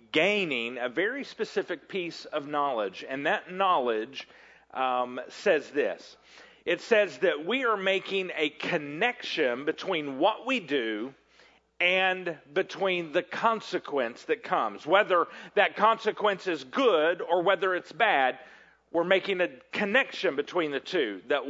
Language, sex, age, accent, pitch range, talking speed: English, male, 40-59, American, 145-220 Hz, 135 wpm